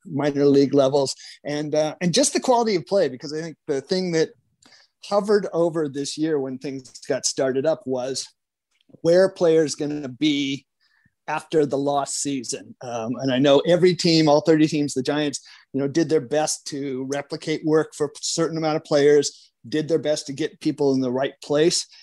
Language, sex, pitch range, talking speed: English, male, 135-160 Hz, 190 wpm